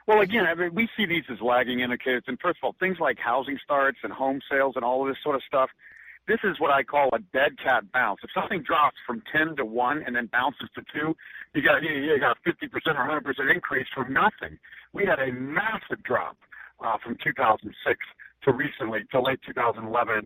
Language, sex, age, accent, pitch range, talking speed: English, male, 50-69, American, 115-155 Hz, 215 wpm